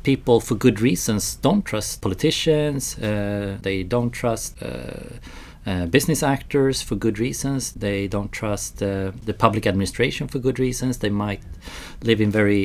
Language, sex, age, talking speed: English, male, 40-59, 155 wpm